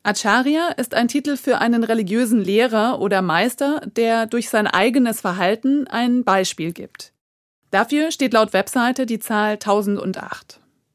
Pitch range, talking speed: 205-255 Hz, 135 wpm